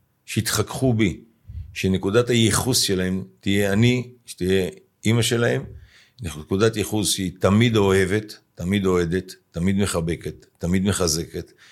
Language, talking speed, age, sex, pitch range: Hebrew, 110 wpm, 50-69, male, 90-115 Hz